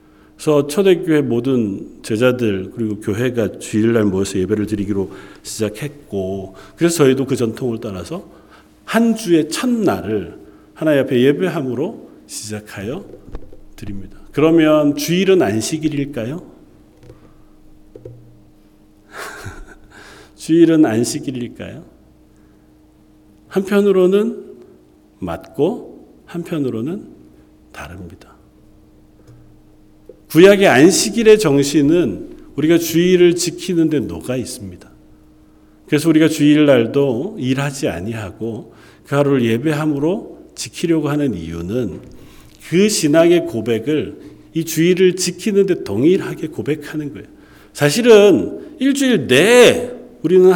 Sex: male